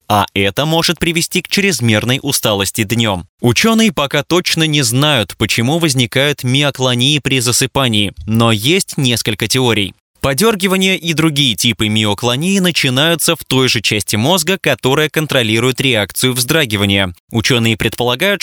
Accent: native